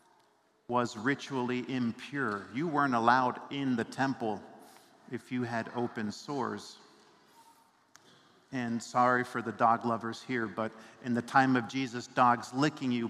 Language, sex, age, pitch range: English, male, 50-69, 120-145 Hz